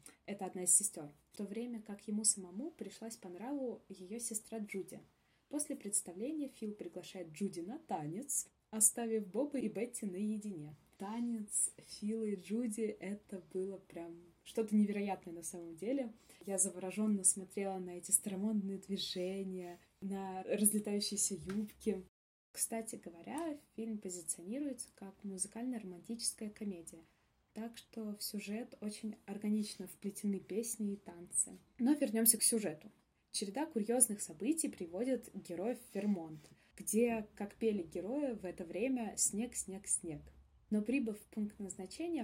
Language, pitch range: Russian, 190-230 Hz